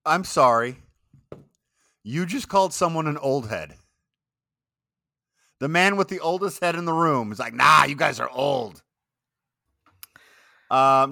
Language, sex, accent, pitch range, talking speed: English, male, American, 95-130 Hz, 140 wpm